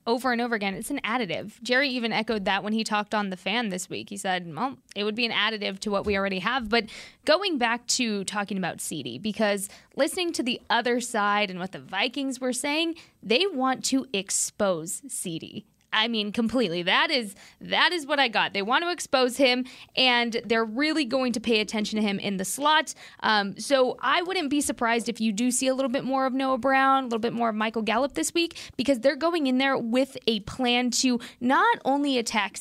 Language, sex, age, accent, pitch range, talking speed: English, female, 20-39, American, 205-270 Hz, 225 wpm